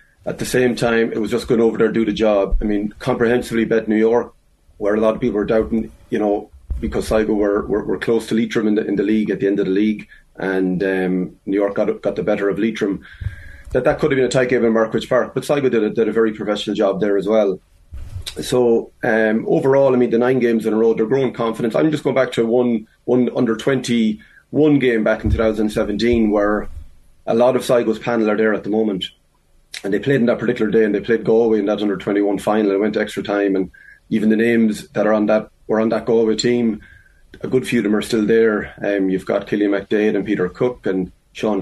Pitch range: 100-120 Hz